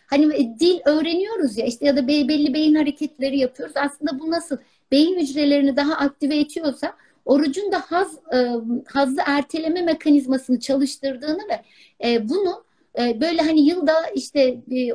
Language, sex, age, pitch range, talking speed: Turkish, female, 60-79, 265-325 Hz, 150 wpm